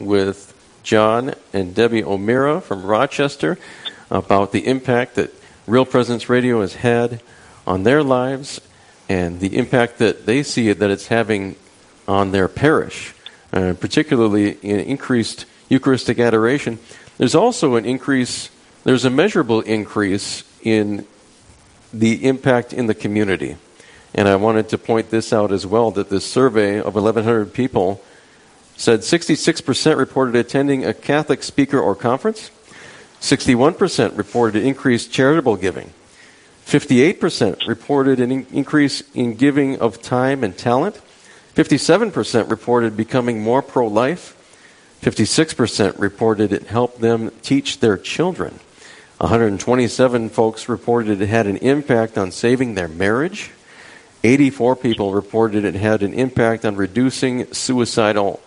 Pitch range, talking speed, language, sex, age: 105-130 Hz, 130 wpm, English, male, 50-69